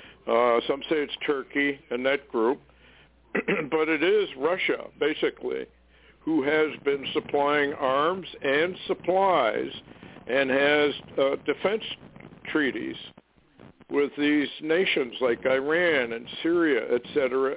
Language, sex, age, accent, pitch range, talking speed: English, male, 60-79, American, 120-185 Hz, 115 wpm